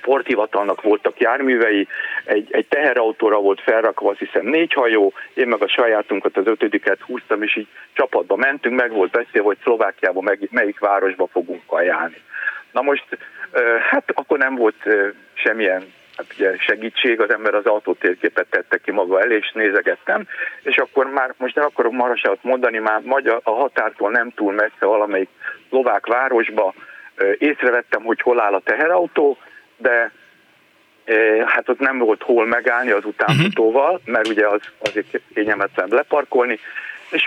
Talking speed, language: 145 wpm, Hungarian